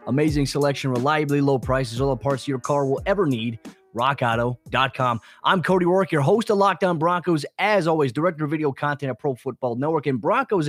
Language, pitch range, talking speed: English, 135-170 Hz, 190 wpm